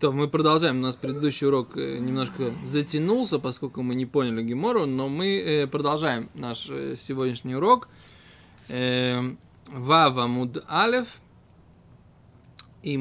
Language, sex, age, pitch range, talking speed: Russian, male, 20-39, 130-175 Hz, 110 wpm